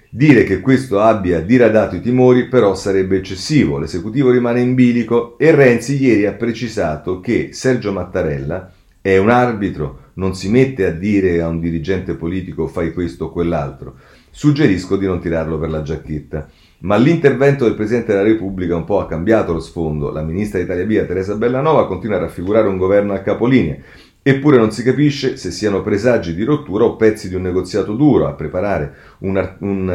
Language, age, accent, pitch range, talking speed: Italian, 40-59, native, 85-115 Hz, 180 wpm